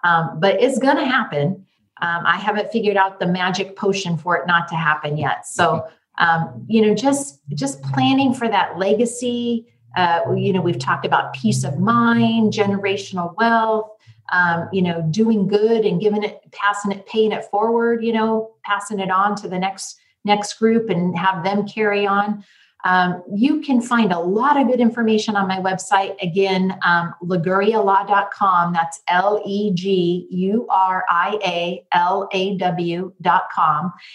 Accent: American